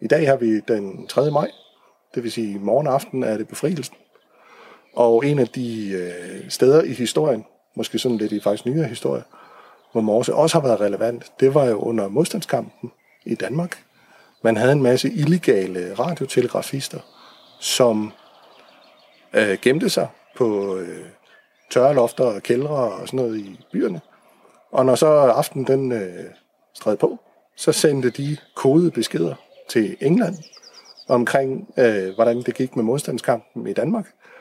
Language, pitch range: Danish, 115-145 Hz